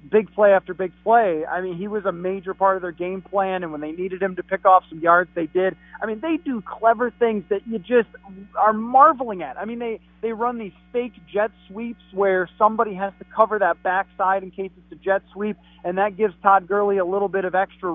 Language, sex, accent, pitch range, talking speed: English, male, American, 180-215 Hz, 240 wpm